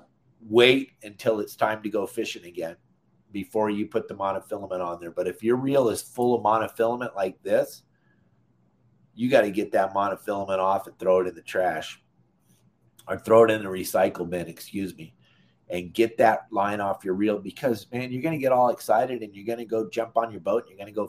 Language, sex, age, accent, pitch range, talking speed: English, male, 30-49, American, 100-120 Hz, 215 wpm